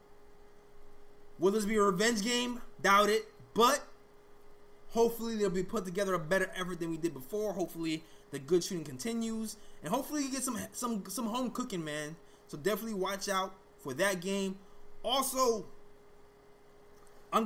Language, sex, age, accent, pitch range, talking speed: English, male, 20-39, American, 165-205 Hz, 155 wpm